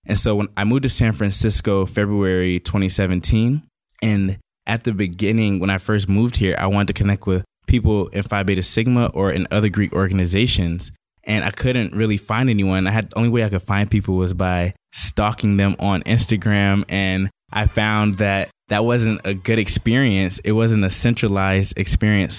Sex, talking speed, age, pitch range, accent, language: male, 180 wpm, 20-39, 95-105 Hz, American, English